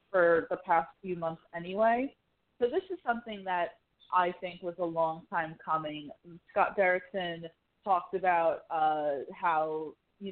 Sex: female